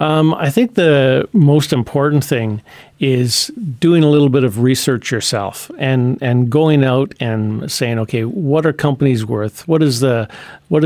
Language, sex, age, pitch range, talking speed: English, male, 50-69, 120-140 Hz, 165 wpm